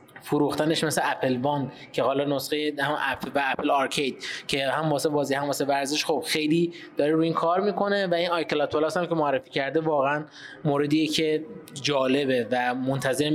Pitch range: 135-160 Hz